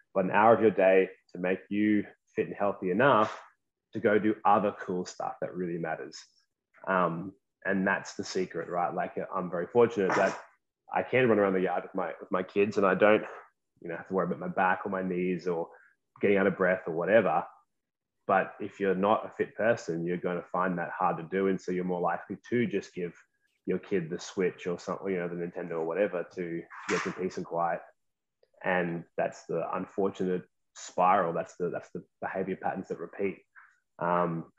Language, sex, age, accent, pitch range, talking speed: English, male, 20-39, Australian, 90-100 Hz, 200 wpm